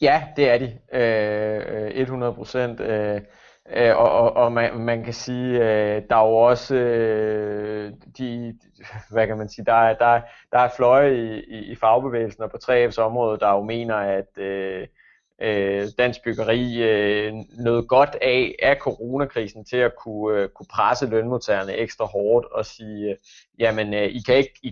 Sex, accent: male, native